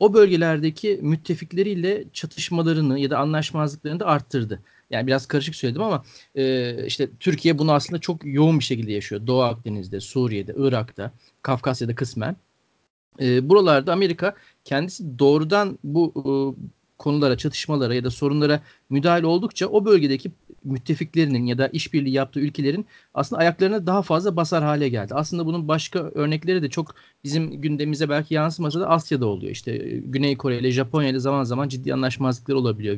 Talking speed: 150 wpm